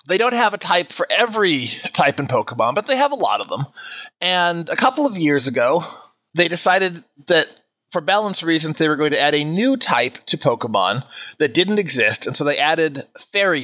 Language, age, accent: English, 30-49, American